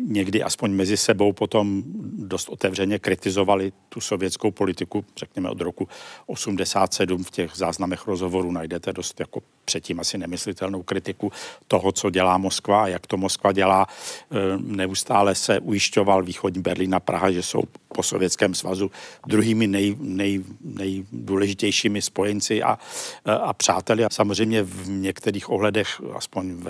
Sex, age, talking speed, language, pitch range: male, 50-69, 135 wpm, Czech, 95-105 Hz